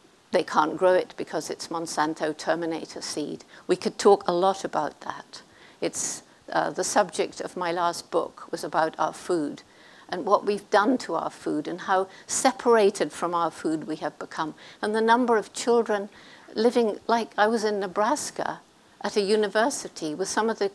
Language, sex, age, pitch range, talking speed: English, female, 60-79, 185-230 Hz, 180 wpm